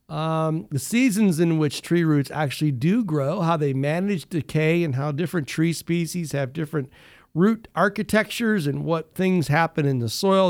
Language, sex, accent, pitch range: English, male, American, 150-180 Hz